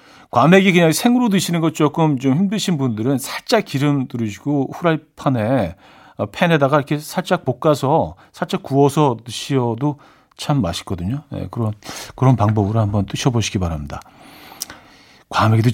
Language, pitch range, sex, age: Korean, 105-150 Hz, male, 40-59